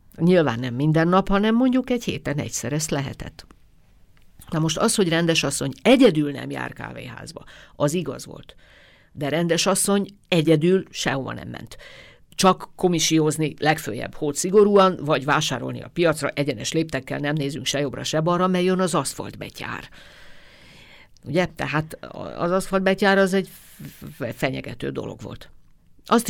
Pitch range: 135-170 Hz